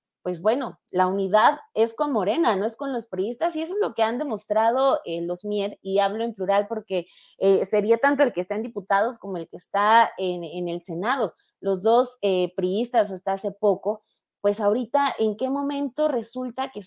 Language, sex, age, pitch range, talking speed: Spanish, female, 30-49, 200-240 Hz, 205 wpm